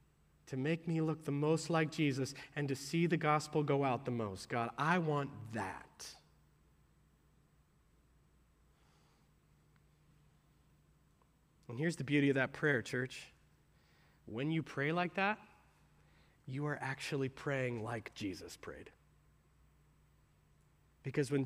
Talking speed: 120 wpm